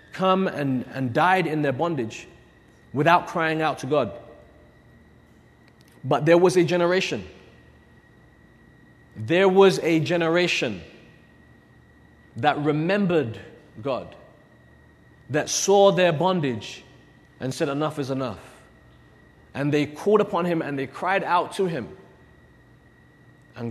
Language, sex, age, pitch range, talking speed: English, male, 30-49, 130-170 Hz, 115 wpm